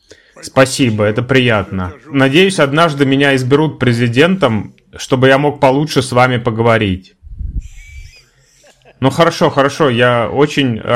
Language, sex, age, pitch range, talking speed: Russian, male, 20-39, 110-140 Hz, 110 wpm